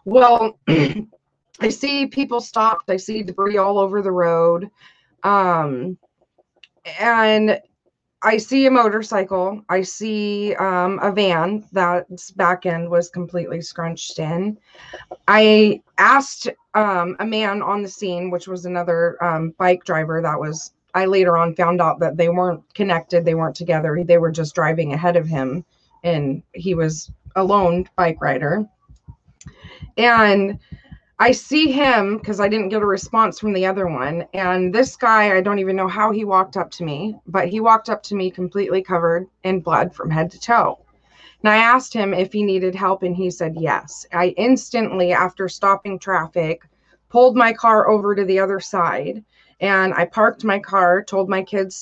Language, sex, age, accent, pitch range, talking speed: English, female, 20-39, American, 170-210 Hz, 170 wpm